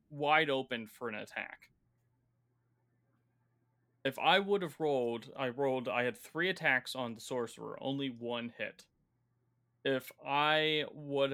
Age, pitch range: 30-49, 120-150 Hz